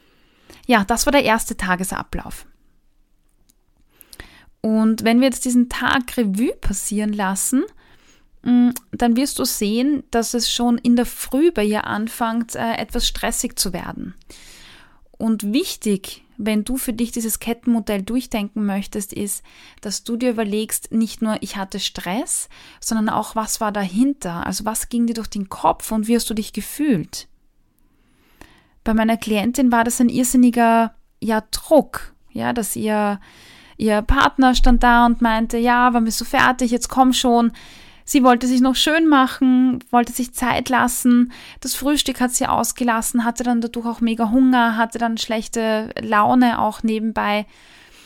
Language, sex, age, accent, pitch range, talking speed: German, female, 20-39, German, 220-250 Hz, 155 wpm